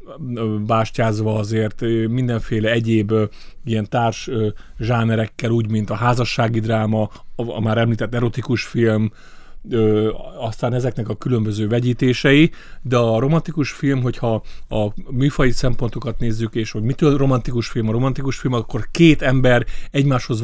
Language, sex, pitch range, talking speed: Hungarian, male, 110-130 Hz, 125 wpm